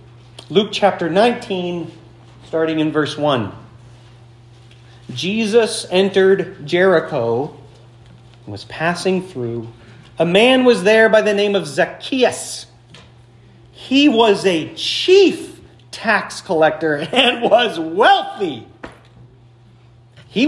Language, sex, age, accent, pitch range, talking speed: English, male, 40-59, American, 120-180 Hz, 95 wpm